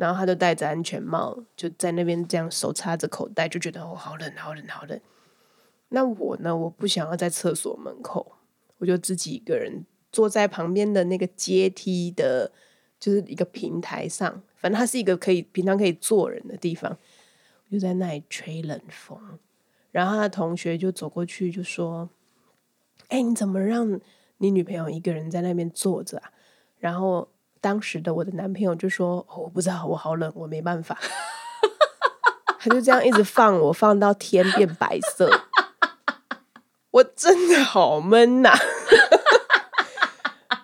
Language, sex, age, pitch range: Chinese, female, 20-39, 175-240 Hz